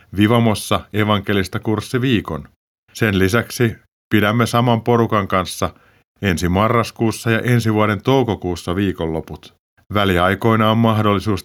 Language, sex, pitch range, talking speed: Finnish, male, 95-120 Hz, 100 wpm